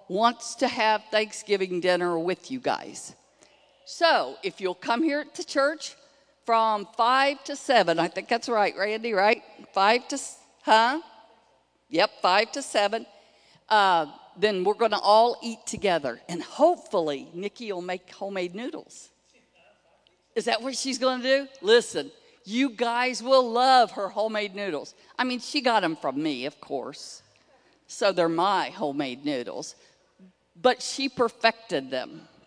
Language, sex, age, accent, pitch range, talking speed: English, female, 50-69, American, 190-265 Hz, 145 wpm